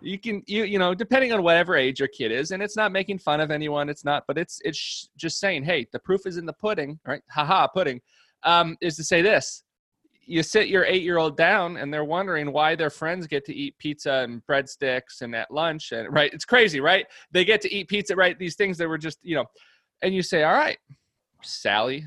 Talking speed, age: 235 wpm, 30-49